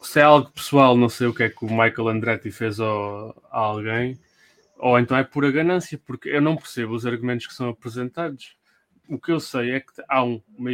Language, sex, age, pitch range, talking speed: English, male, 20-39, 115-150 Hz, 210 wpm